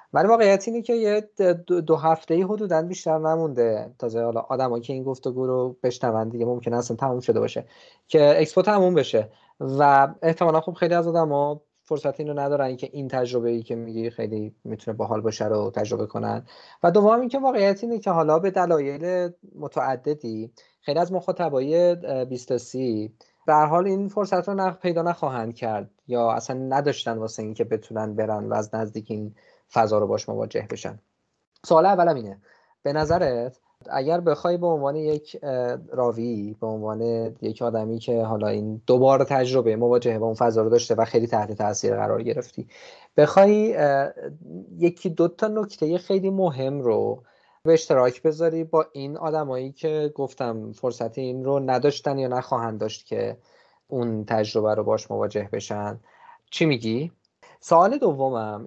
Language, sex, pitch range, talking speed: Persian, male, 115-170 Hz, 160 wpm